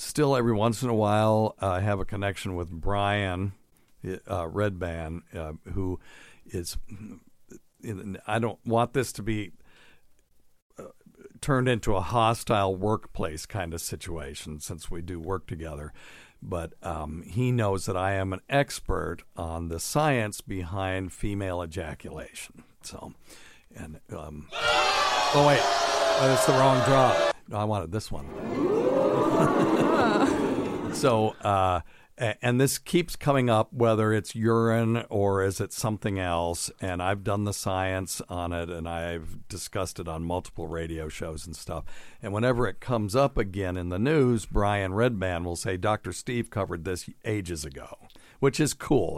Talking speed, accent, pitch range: 140 wpm, American, 90-115 Hz